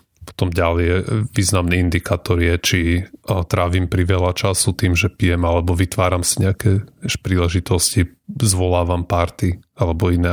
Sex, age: male, 30-49